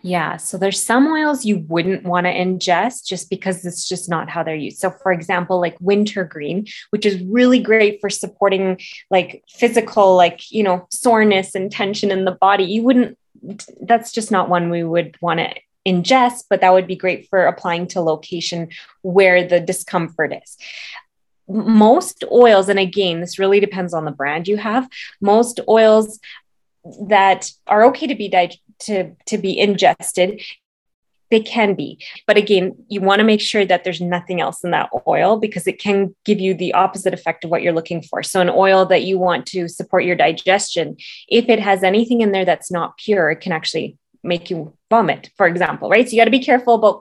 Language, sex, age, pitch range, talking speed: English, female, 20-39, 180-215 Hz, 195 wpm